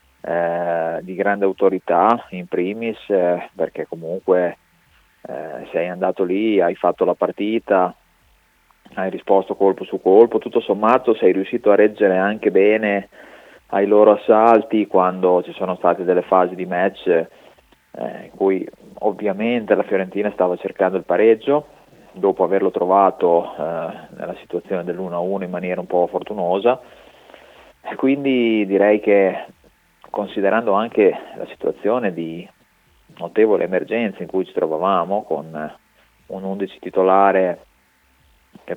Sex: male